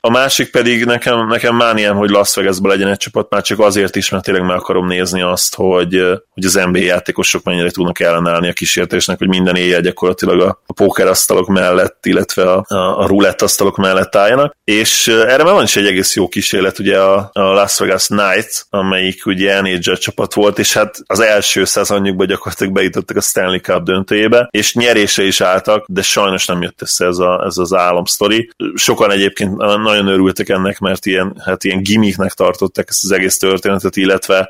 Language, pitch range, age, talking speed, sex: Hungarian, 95-105 Hz, 20-39, 185 wpm, male